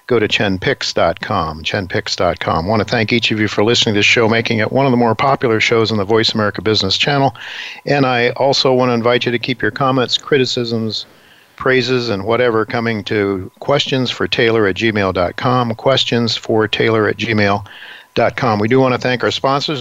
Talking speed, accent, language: 180 wpm, American, English